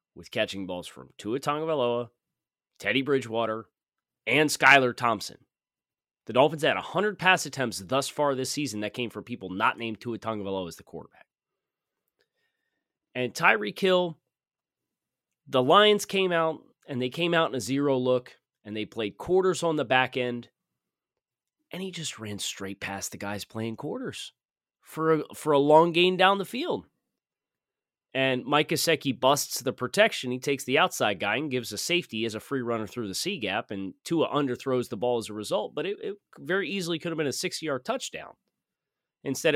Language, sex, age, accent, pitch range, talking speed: English, male, 30-49, American, 120-180 Hz, 175 wpm